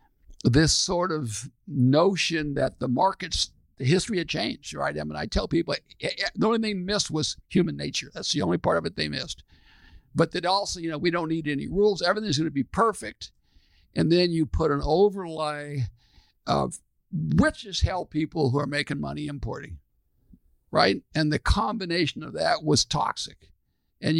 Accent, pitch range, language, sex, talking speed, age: American, 120-180 Hz, English, male, 180 wpm, 60-79